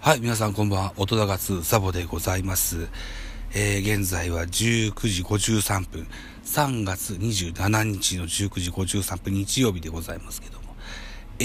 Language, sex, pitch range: Japanese, male, 90-120 Hz